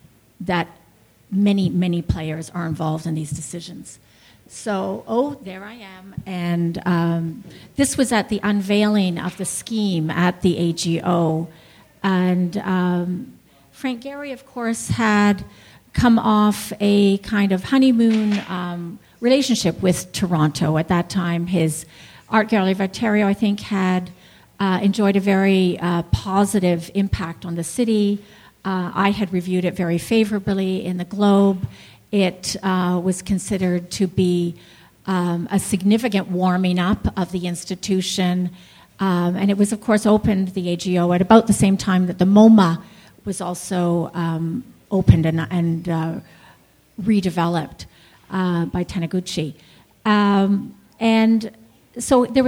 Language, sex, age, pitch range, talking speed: English, female, 50-69, 175-210 Hz, 135 wpm